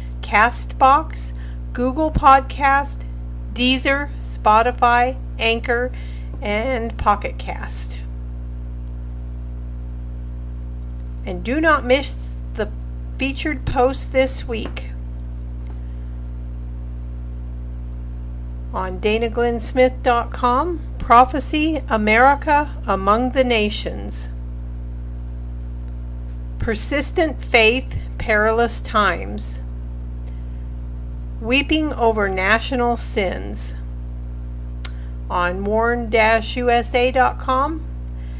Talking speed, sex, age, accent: 55 wpm, female, 50-69, American